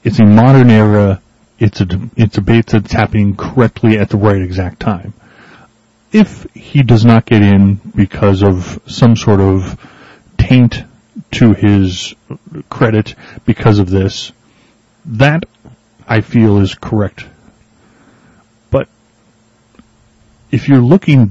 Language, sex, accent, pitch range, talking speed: English, male, American, 100-125 Hz, 125 wpm